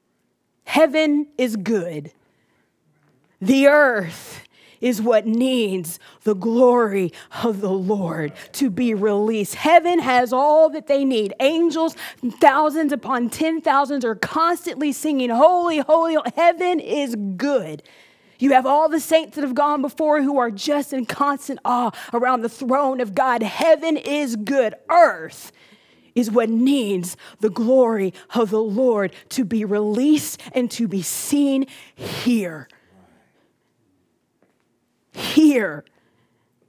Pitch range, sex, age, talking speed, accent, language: 210-285 Hz, female, 30-49, 130 wpm, American, English